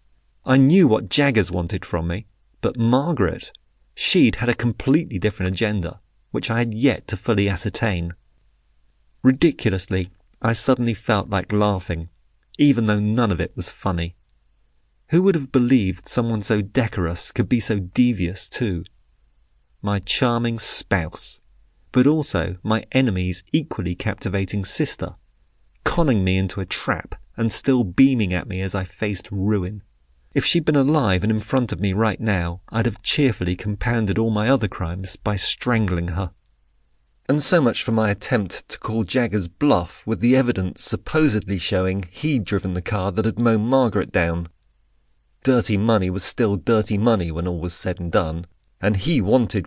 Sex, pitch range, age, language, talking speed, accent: male, 90-115 Hz, 30-49, English, 160 wpm, British